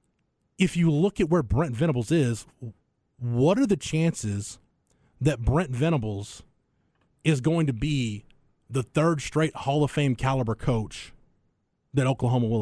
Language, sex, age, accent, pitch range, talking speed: English, male, 30-49, American, 115-155 Hz, 145 wpm